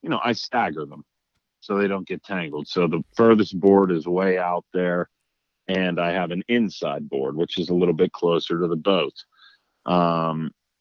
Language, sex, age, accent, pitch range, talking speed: English, male, 40-59, American, 85-100 Hz, 190 wpm